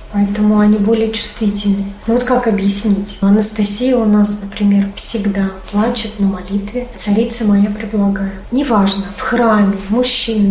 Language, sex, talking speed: Russian, female, 130 wpm